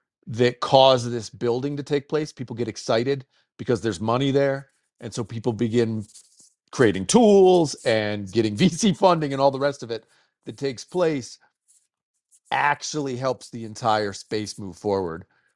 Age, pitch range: 40-59, 105-130 Hz